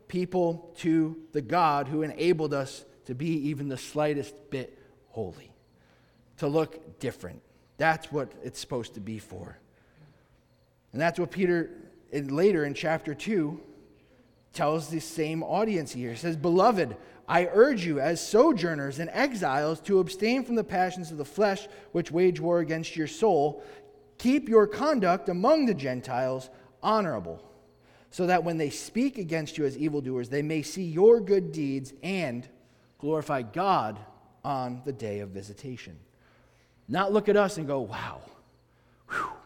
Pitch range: 130-180 Hz